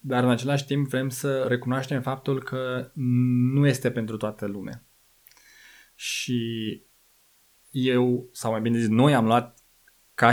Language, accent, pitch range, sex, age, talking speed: Romanian, native, 115-135 Hz, male, 20-39, 140 wpm